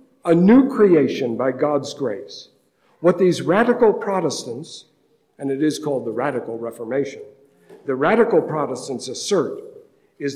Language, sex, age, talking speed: English, male, 60-79, 125 wpm